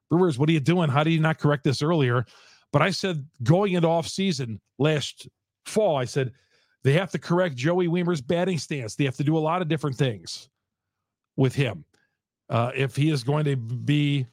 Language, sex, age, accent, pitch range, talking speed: English, male, 40-59, American, 130-165 Hz, 205 wpm